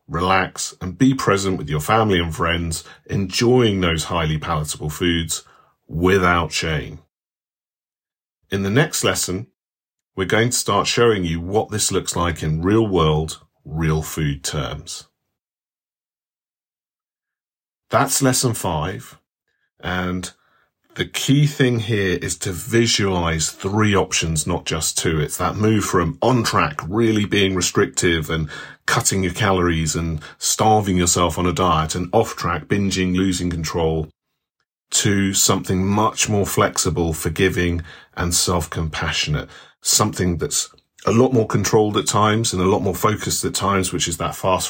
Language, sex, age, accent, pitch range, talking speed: English, male, 40-59, British, 85-105 Hz, 140 wpm